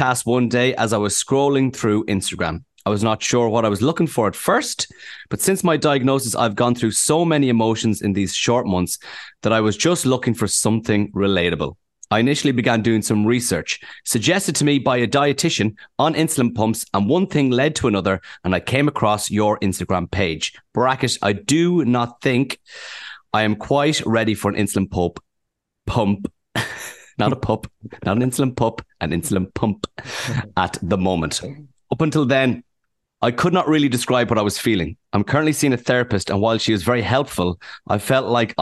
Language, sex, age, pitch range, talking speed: English, male, 30-49, 100-135 Hz, 190 wpm